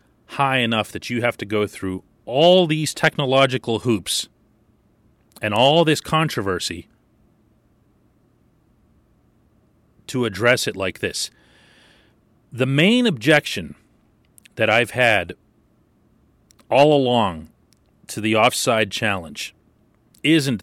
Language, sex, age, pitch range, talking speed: English, male, 30-49, 105-140 Hz, 100 wpm